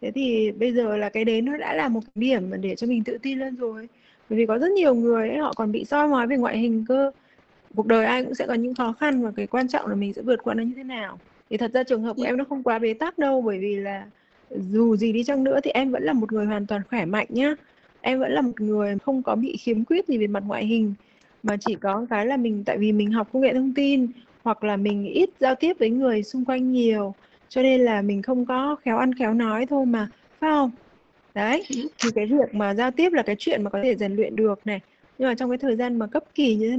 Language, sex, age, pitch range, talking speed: Vietnamese, female, 20-39, 210-265 Hz, 280 wpm